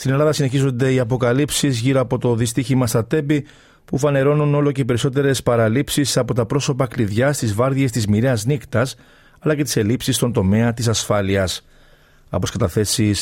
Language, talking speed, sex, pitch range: Greek, 165 wpm, male, 105-130 Hz